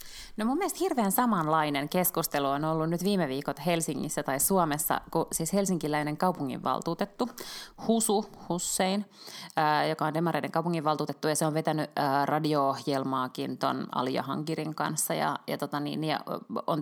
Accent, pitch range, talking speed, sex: native, 150-185 Hz, 140 wpm, female